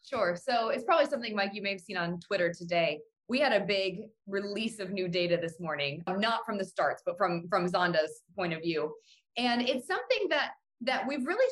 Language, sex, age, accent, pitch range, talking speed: English, female, 20-39, American, 195-260 Hz, 215 wpm